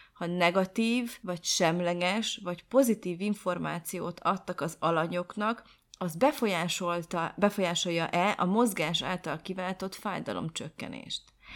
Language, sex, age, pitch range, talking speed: Hungarian, female, 30-49, 170-220 Hz, 90 wpm